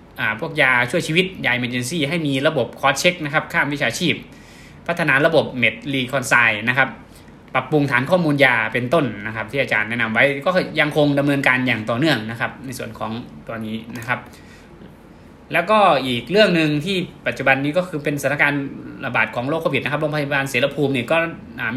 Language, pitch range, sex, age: Thai, 120-150 Hz, male, 20-39